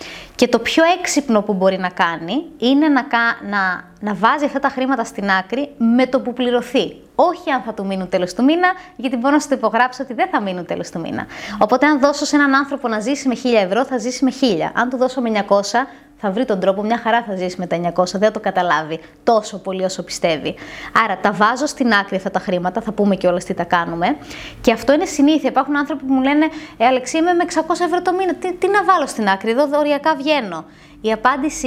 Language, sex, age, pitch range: Greek, female, 20-39, 200-280 Hz